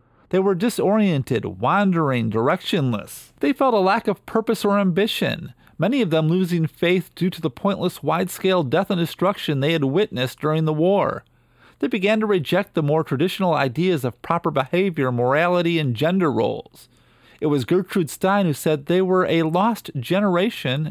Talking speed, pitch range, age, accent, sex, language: 165 wpm, 130-180 Hz, 40-59, American, male, English